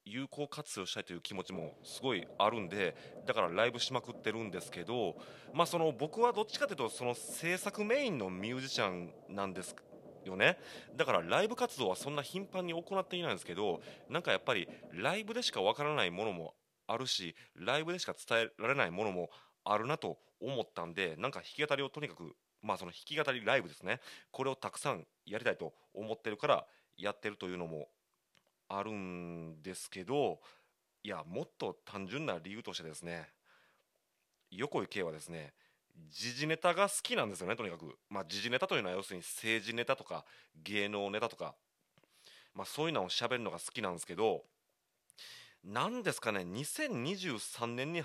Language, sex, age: Japanese, male, 30-49